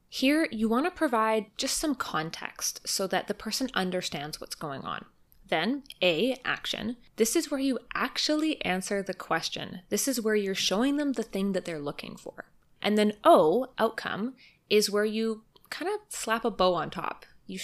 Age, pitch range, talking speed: 20-39, 185-250 Hz, 185 wpm